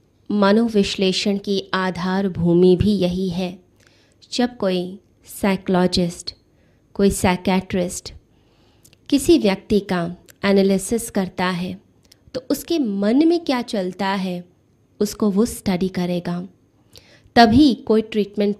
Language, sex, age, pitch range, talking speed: Hindi, female, 20-39, 180-210 Hz, 105 wpm